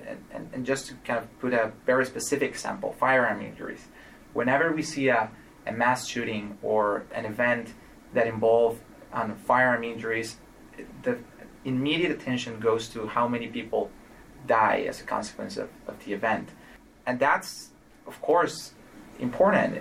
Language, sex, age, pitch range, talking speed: English, male, 30-49, 115-135 Hz, 150 wpm